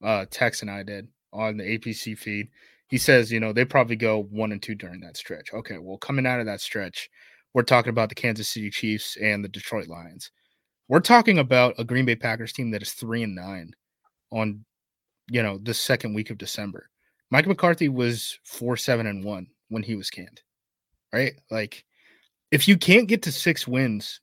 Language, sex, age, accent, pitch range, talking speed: English, male, 20-39, American, 110-140 Hz, 200 wpm